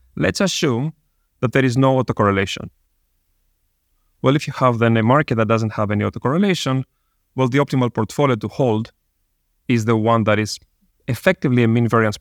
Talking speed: 165 wpm